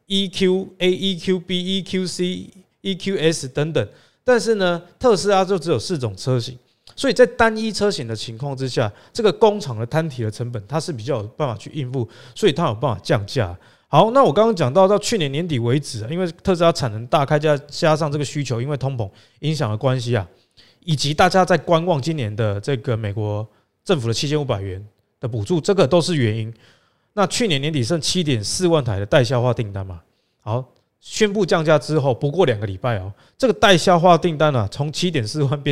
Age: 20-39